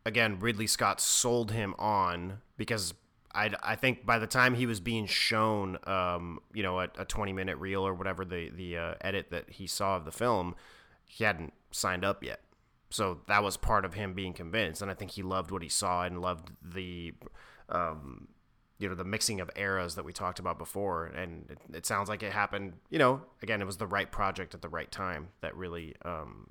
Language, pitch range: English, 95-120 Hz